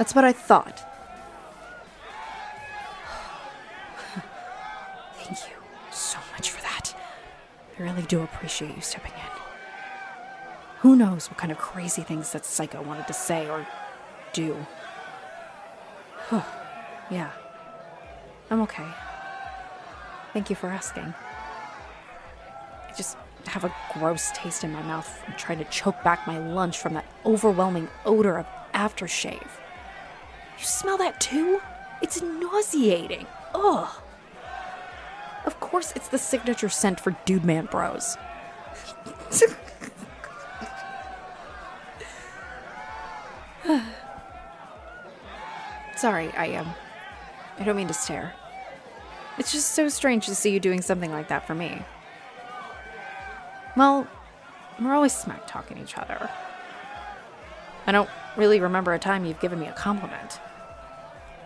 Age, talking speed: 30-49, 115 wpm